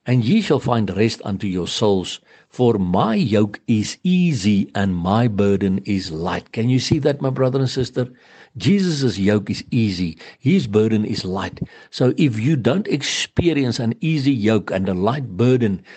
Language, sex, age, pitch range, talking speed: English, male, 60-79, 100-125 Hz, 175 wpm